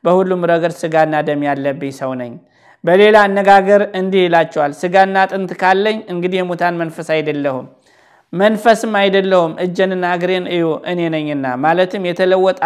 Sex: male